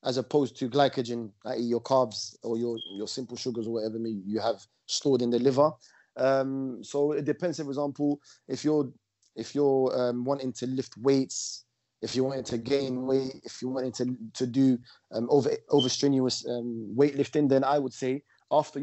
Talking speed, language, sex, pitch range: 185 wpm, English, male, 120-135 Hz